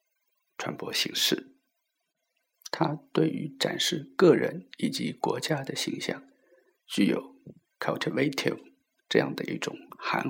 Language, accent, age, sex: Chinese, native, 50-69, male